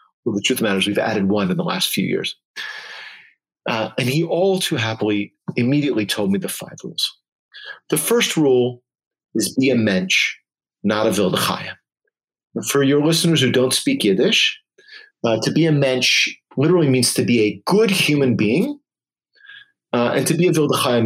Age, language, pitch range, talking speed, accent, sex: 40-59, English, 110-185 Hz, 180 wpm, American, male